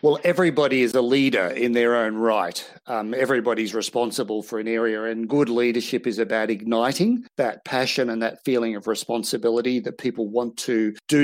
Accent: Australian